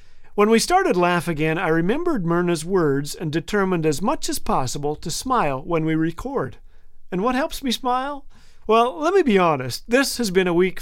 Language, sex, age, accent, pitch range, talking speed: English, male, 50-69, American, 155-220 Hz, 195 wpm